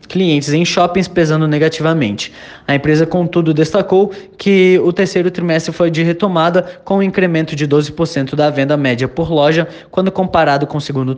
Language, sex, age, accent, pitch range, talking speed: Portuguese, male, 20-39, Brazilian, 145-170 Hz, 165 wpm